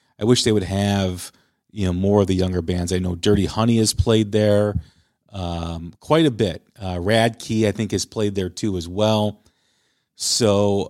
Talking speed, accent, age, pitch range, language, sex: 195 wpm, American, 40-59, 95-125 Hz, English, male